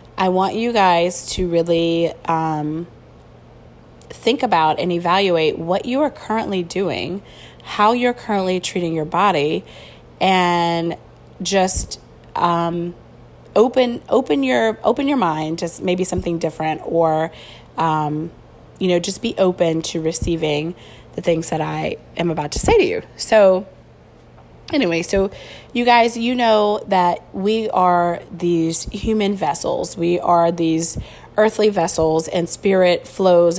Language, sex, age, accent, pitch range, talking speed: English, female, 20-39, American, 165-205 Hz, 135 wpm